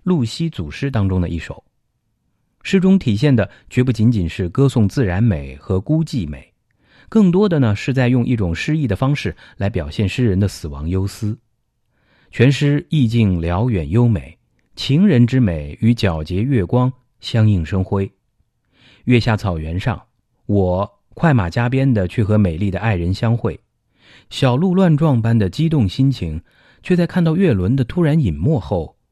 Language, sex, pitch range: English, male, 95-130 Hz